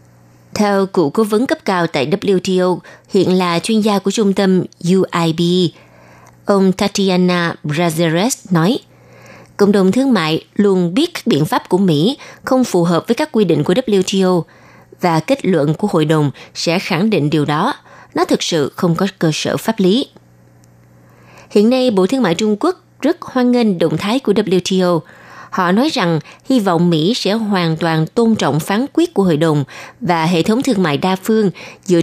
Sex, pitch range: female, 160-215 Hz